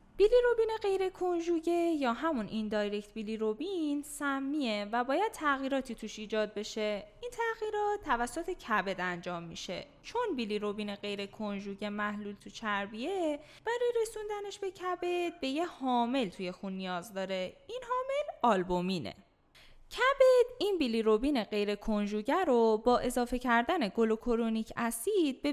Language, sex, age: Persian, female, 20-39